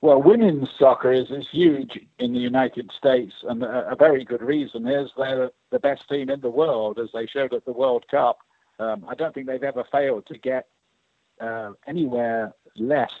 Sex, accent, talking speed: male, British, 195 wpm